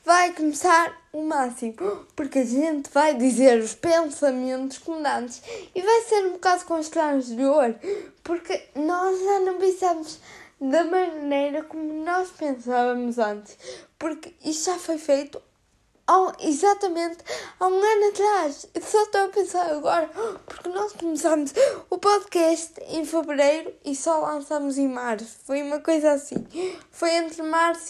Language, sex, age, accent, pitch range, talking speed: Portuguese, female, 10-29, Brazilian, 275-345 Hz, 135 wpm